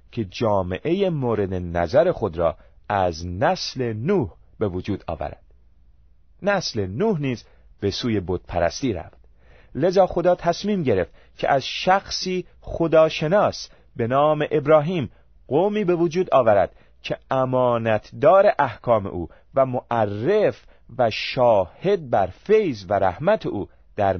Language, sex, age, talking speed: Persian, male, 40-59, 120 wpm